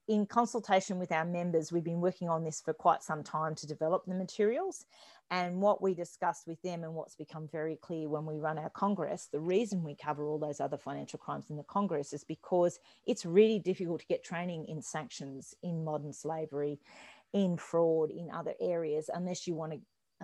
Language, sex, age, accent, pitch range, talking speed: English, female, 40-59, Australian, 155-195 Hz, 200 wpm